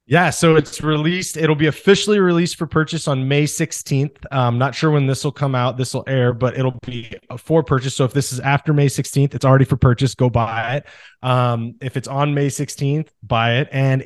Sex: male